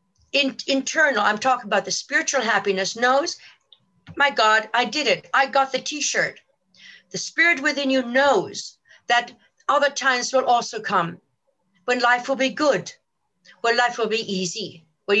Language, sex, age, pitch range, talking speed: English, female, 50-69, 200-270 Hz, 155 wpm